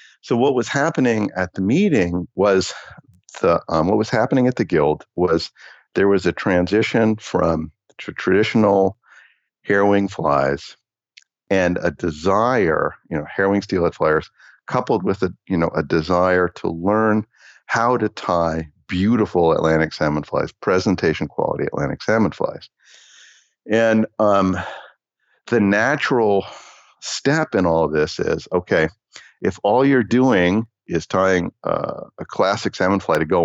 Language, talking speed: English, 140 wpm